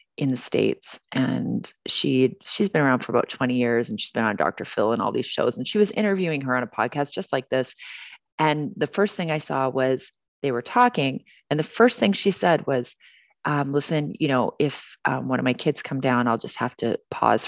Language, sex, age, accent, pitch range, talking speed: English, female, 30-49, American, 135-185 Hz, 230 wpm